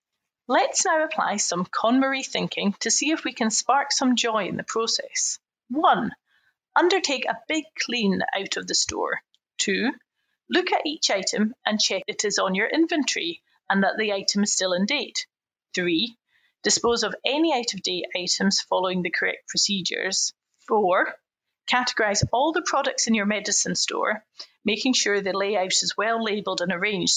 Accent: British